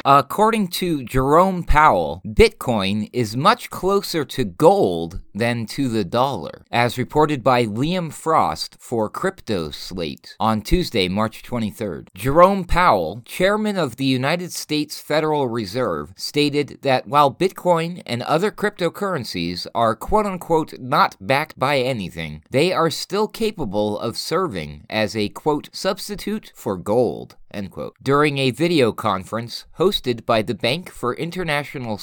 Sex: male